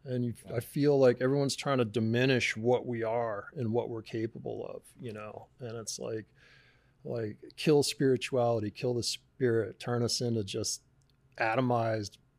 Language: English